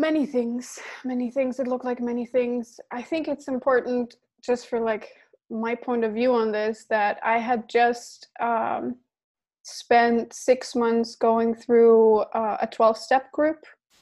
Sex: female